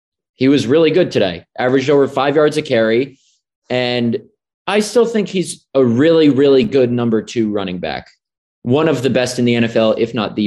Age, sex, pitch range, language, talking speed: 20-39, male, 110-135 Hz, English, 195 wpm